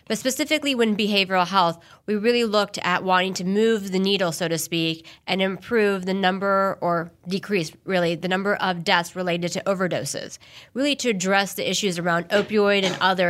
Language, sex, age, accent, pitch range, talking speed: English, female, 30-49, American, 175-205 Hz, 180 wpm